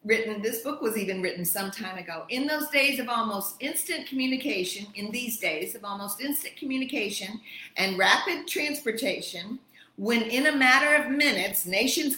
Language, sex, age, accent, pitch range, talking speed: English, female, 50-69, American, 200-270 Hz, 165 wpm